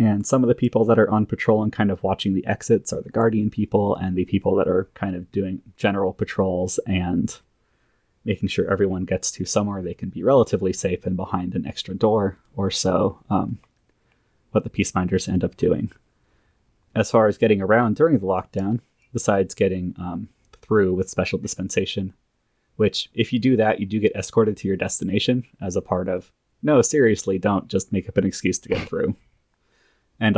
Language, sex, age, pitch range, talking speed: English, male, 30-49, 95-110 Hz, 195 wpm